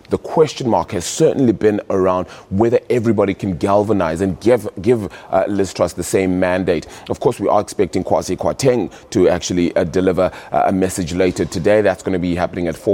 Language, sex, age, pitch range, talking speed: English, male, 30-49, 95-120 Hz, 200 wpm